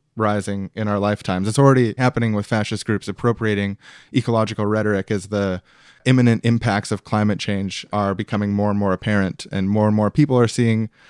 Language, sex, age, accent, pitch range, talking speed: English, male, 20-39, American, 100-115 Hz, 180 wpm